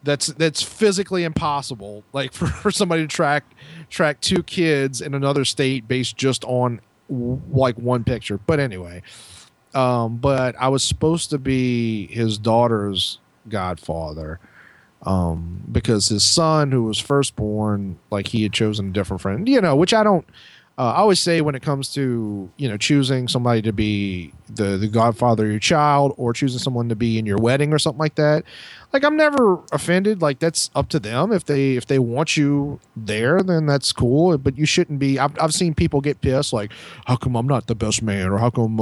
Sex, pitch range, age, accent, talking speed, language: male, 110-160 Hz, 30-49, American, 195 wpm, English